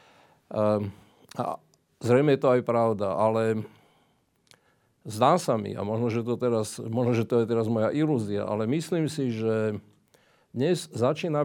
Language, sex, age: Slovak, male, 50-69